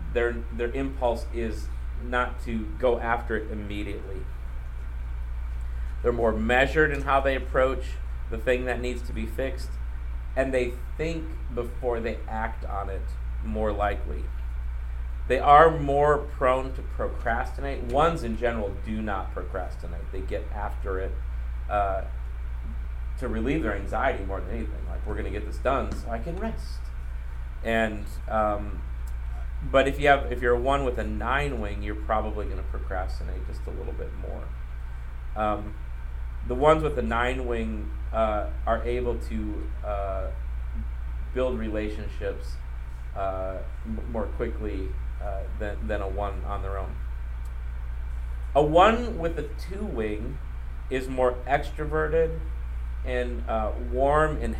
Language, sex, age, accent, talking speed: English, male, 30-49, American, 140 wpm